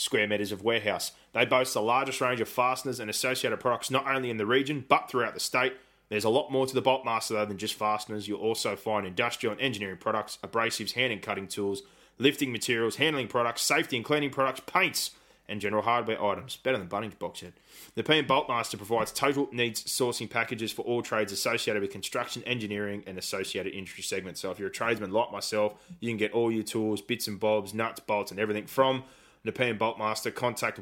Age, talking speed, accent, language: 20-39, 210 wpm, Australian, English